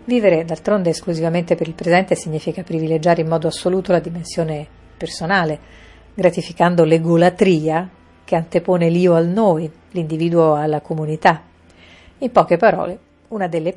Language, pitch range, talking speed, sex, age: Italian, 160-190 Hz, 125 wpm, female, 40-59